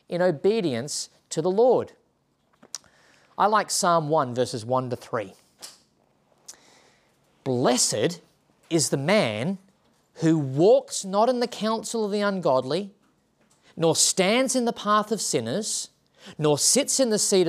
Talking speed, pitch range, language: 130 wpm, 125-195 Hz, English